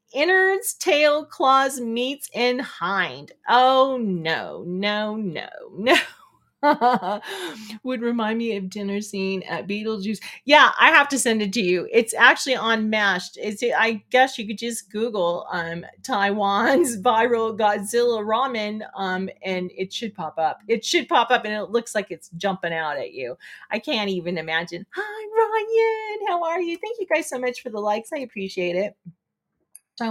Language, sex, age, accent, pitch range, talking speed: English, female, 30-49, American, 195-270 Hz, 165 wpm